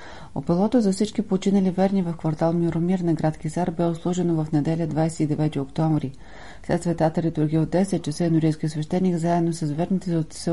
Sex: female